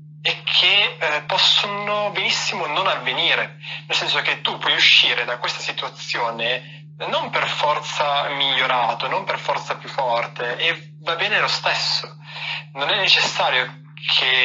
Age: 20-39